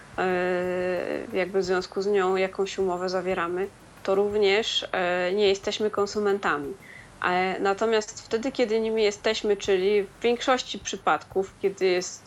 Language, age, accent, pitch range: Polish, 20-39, native, 185-205 Hz